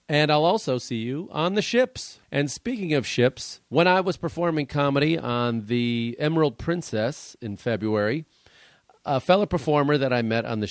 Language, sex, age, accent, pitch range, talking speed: English, male, 40-59, American, 115-155 Hz, 175 wpm